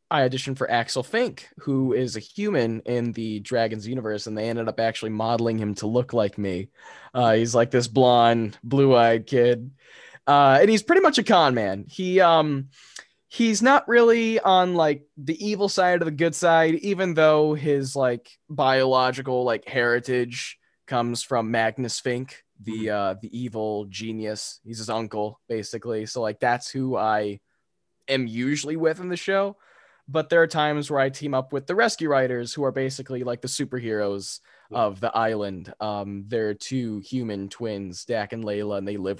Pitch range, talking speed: 110-155 Hz, 180 wpm